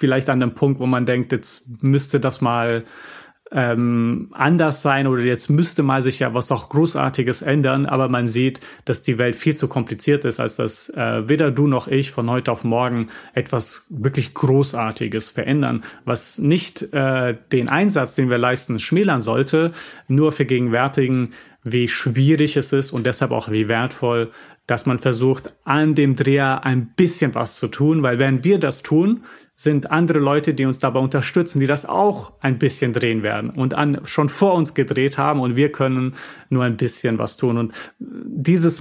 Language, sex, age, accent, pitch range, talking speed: German, male, 30-49, German, 125-145 Hz, 180 wpm